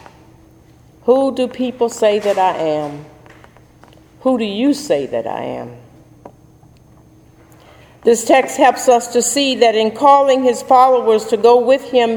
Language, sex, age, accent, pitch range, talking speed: English, female, 50-69, American, 205-265 Hz, 145 wpm